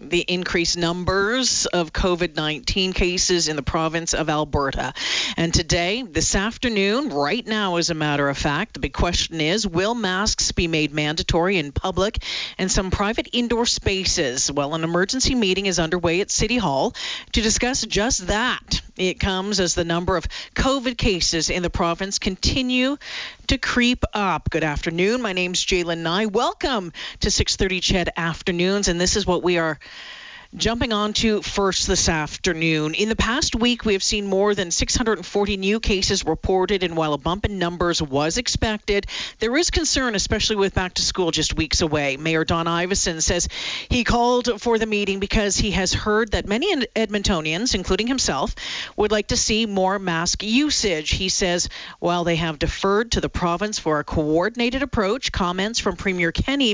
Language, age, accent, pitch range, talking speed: English, 40-59, American, 170-215 Hz, 170 wpm